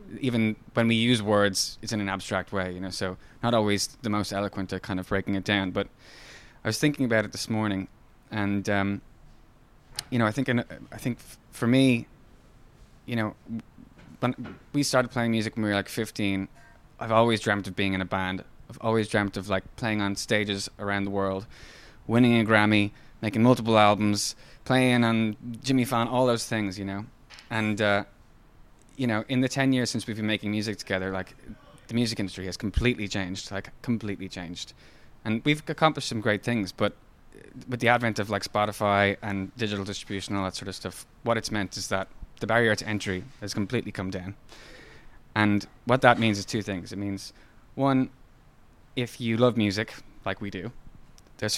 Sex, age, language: male, 20-39, English